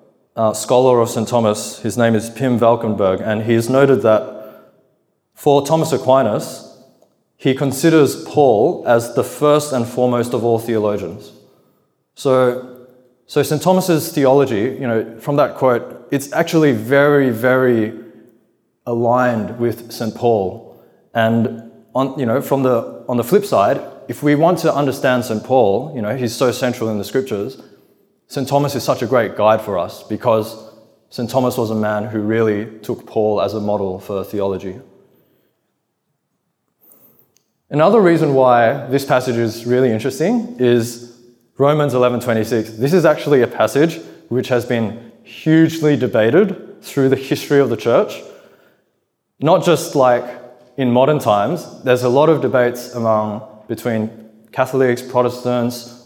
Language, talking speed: English, 150 wpm